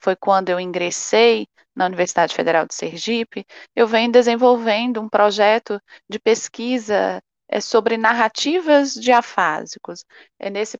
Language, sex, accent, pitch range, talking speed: Portuguese, female, Brazilian, 205-245 Hz, 115 wpm